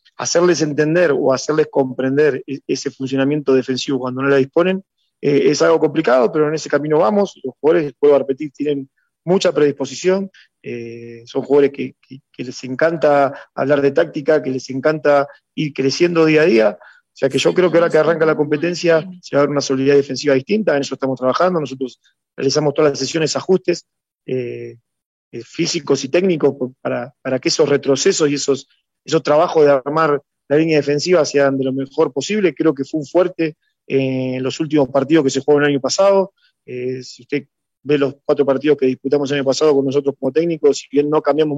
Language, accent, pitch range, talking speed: Spanish, Argentinian, 135-160 Hz, 200 wpm